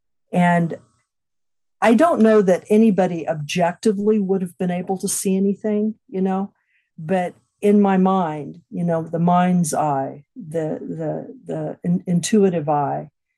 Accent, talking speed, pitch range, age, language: American, 140 wpm, 170-210 Hz, 50-69, English